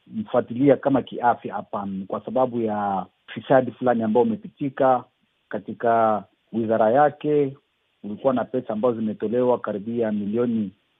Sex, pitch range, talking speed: male, 115-145 Hz, 115 wpm